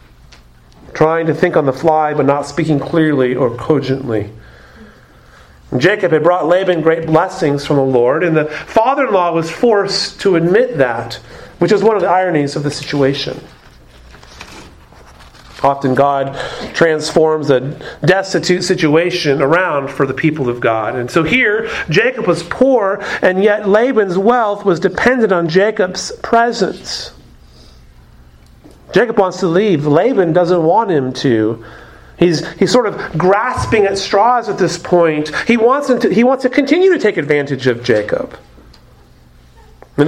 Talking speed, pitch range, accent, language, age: 145 wpm, 140-205 Hz, American, English, 40-59